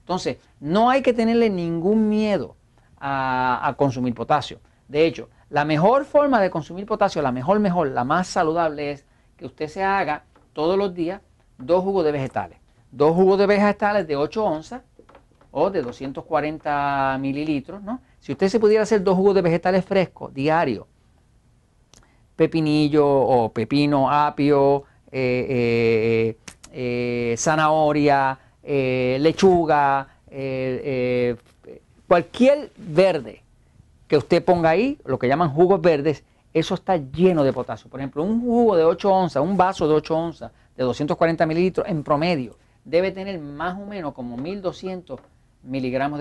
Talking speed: 145 wpm